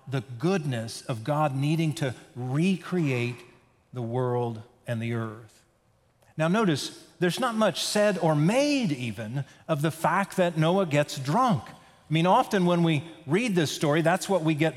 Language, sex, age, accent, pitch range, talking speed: English, male, 40-59, American, 135-180 Hz, 165 wpm